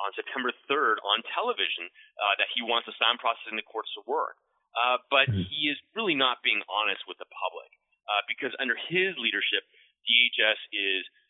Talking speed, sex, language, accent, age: 175 wpm, male, English, American, 30-49